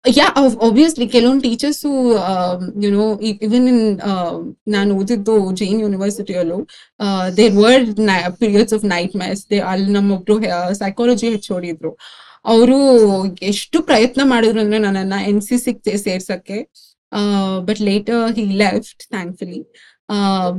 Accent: native